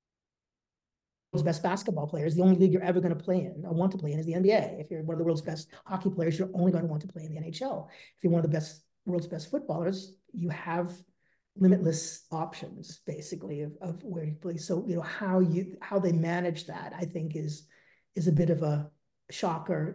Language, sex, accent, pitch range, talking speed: English, male, American, 160-190 Hz, 230 wpm